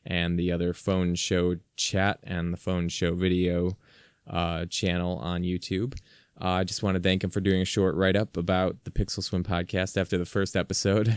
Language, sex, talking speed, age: English, male, 195 wpm, 20-39